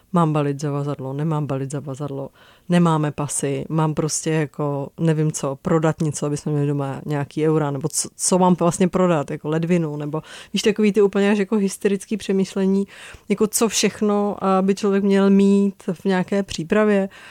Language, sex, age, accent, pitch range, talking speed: Czech, female, 30-49, native, 160-190 Hz, 165 wpm